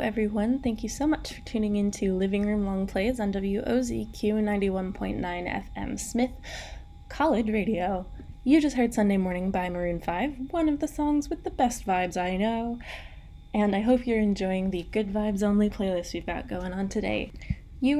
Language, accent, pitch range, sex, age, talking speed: English, American, 205-255 Hz, female, 20-39, 180 wpm